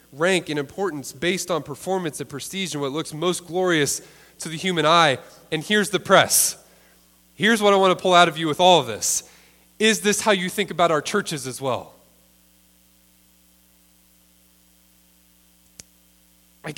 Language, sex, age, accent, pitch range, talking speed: English, male, 20-39, American, 115-175 Hz, 160 wpm